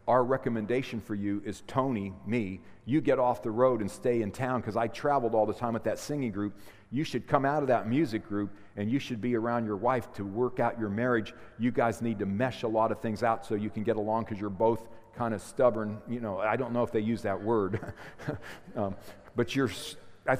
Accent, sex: American, male